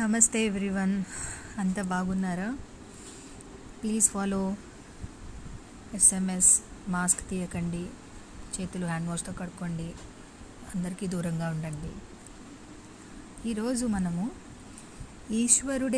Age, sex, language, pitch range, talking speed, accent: 20-39, female, Telugu, 180-230 Hz, 65 wpm, native